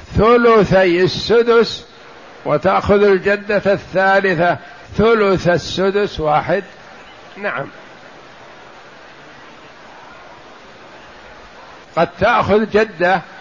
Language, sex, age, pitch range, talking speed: Arabic, male, 60-79, 175-215 Hz, 55 wpm